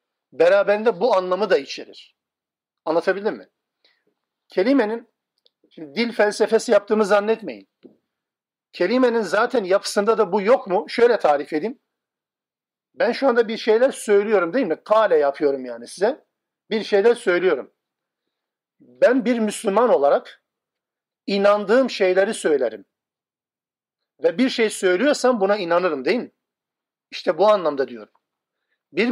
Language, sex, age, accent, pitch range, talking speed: Turkish, male, 50-69, native, 195-245 Hz, 115 wpm